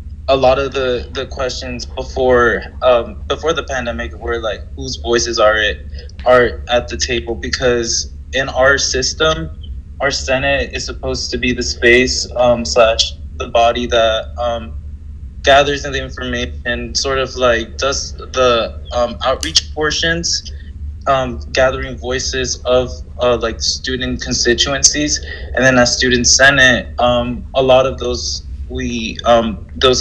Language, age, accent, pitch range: English, 20-39, American, 75-125 Hz